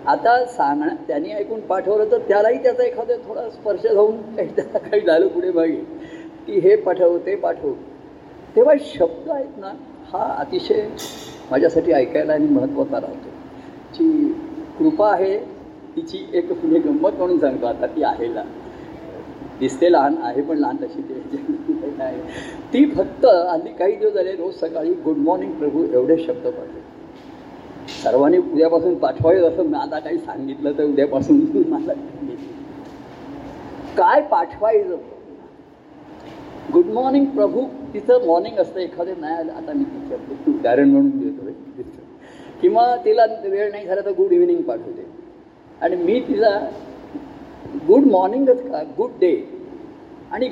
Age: 50-69